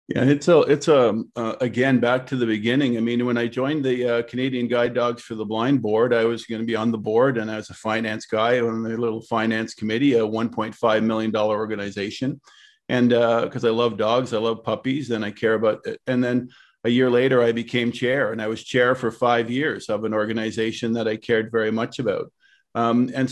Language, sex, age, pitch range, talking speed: English, male, 50-69, 115-130 Hz, 225 wpm